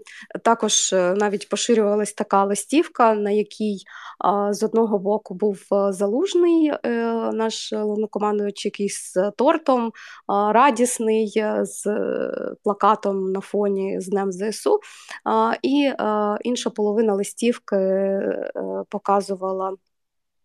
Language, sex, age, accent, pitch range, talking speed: Ukrainian, female, 20-39, native, 205-230 Hz, 85 wpm